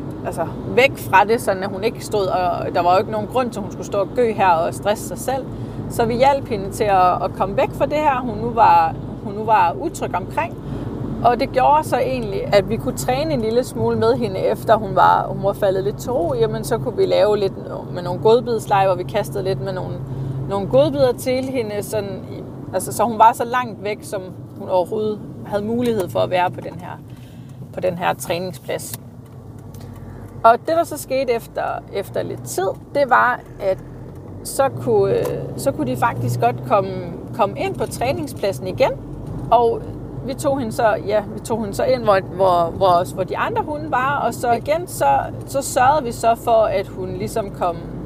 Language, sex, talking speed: Danish, female, 205 wpm